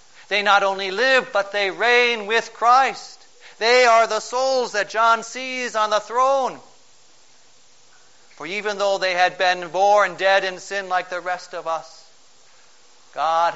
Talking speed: 155 wpm